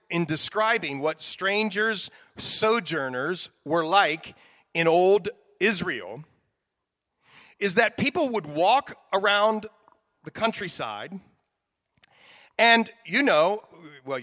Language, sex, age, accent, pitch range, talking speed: English, male, 40-59, American, 175-250 Hz, 95 wpm